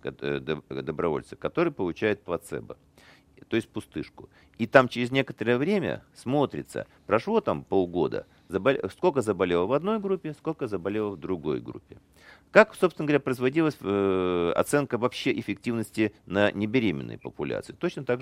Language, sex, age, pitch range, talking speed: Russian, male, 50-69, 80-120 Hz, 130 wpm